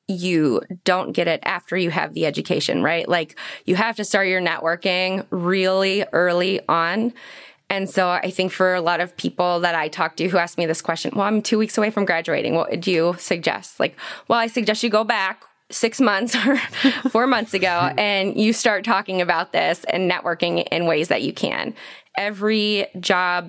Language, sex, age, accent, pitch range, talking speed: English, female, 20-39, American, 170-195 Hz, 195 wpm